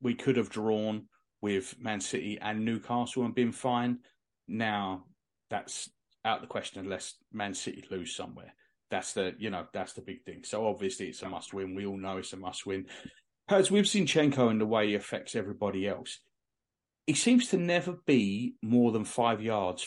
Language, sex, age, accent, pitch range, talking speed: English, male, 40-59, British, 100-135 Hz, 185 wpm